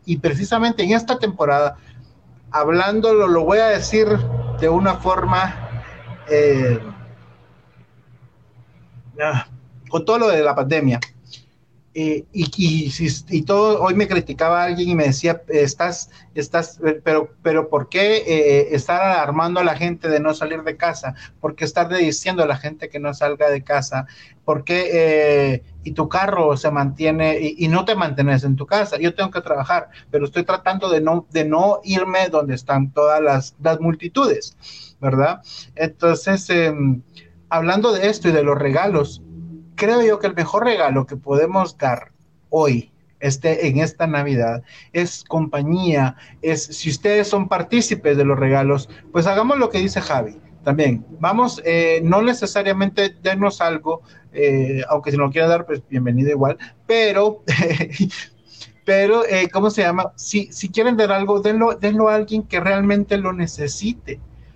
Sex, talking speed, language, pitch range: male, 160 wpm, Spanish, 140-190 Hz